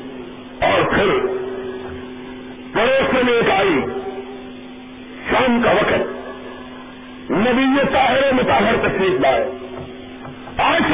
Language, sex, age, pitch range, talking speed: Urdu, female, 50-69, 215-340 Hz, 95 wpm